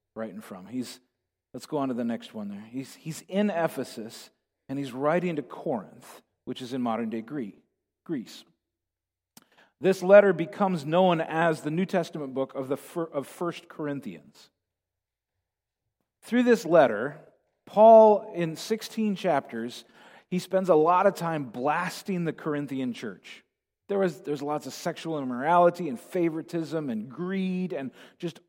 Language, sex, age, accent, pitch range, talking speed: English, male, 40-59, American, 130-185 Hz, 145 wpm